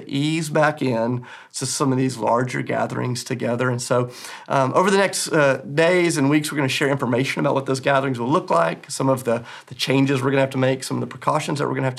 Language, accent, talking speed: English, American, 260 wpm